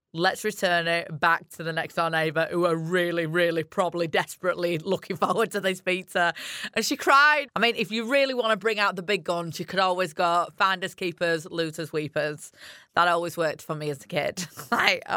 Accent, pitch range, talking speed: British, 175-245 Hz, 205 wpm